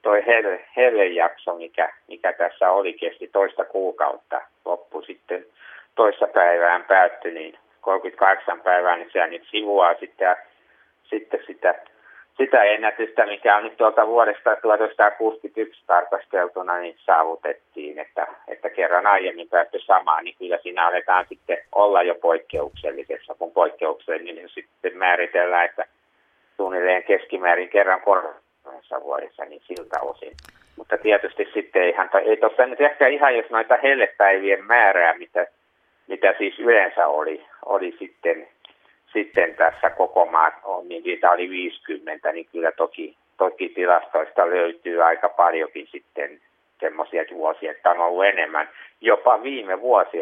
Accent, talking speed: native, 135 wpm